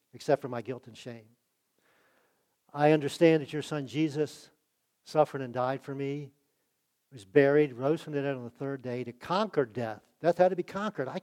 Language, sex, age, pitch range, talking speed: English, male, 50-69, 125-165 Hz, 190 wpm